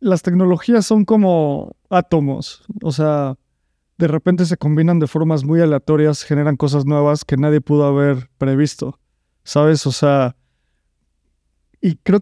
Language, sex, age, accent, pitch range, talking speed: Spanish, male, 30-49, Mexican, 145-170 Hz, 135 wpm